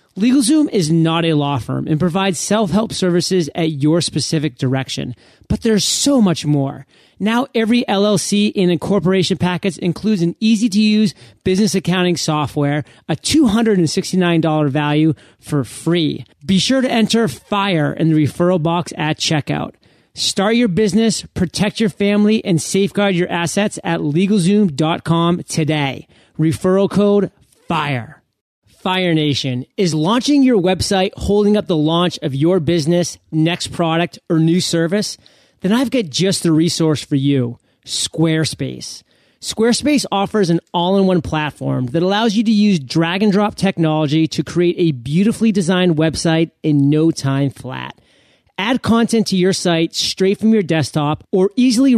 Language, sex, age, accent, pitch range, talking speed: English, male, 30-49, American, 155-205 Hz, 140 wpm